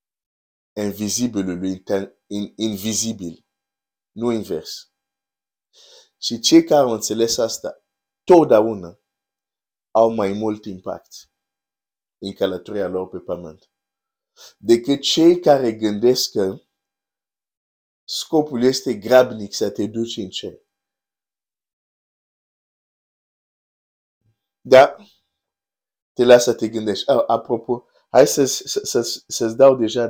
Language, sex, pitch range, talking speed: Romanian, male, 100-120 Hz, 85 wpm